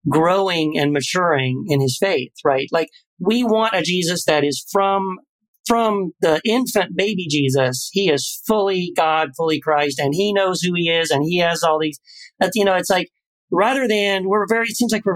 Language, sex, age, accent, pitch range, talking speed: English, male, 40-59, American, 145-195 Hz, 200 wpm